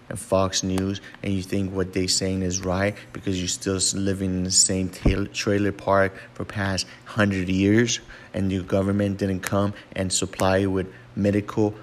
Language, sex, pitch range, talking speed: English, male, 95-105 Hz, 170 wpm